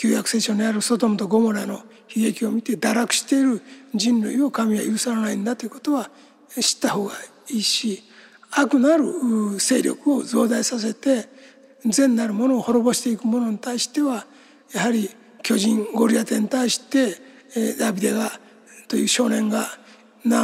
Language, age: Japanese, 60-79